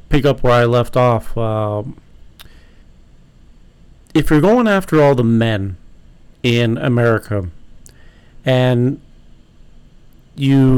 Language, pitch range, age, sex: English, 105-130 Hz, 50-69, male